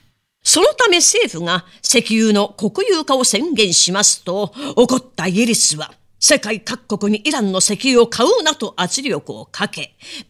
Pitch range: 180-255 Hz